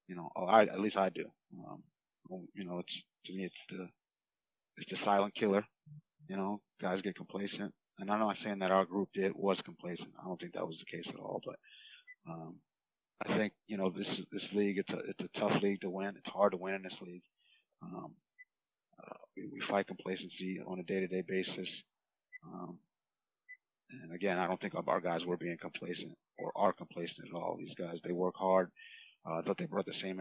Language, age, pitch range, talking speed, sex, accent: English, 30-49, 90-100 Hz, 215 wpm, male, American